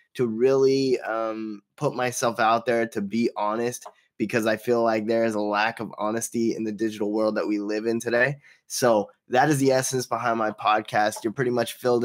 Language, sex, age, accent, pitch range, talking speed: English, male, 10-29, American, 100-120 Hz, 205 wpm